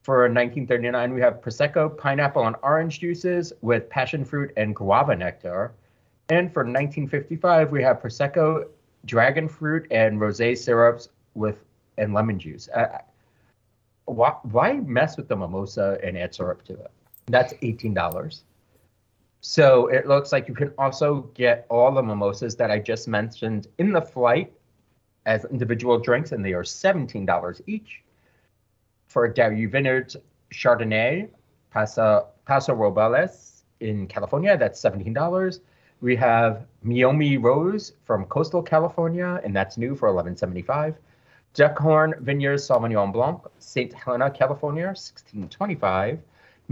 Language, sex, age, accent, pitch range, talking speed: English, male, 30-49, American, 110-155 Hz, 130 wpm